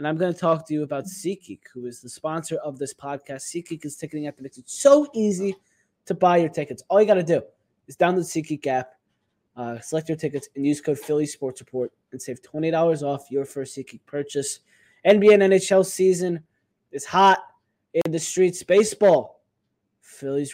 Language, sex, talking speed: English, male, 190 wpm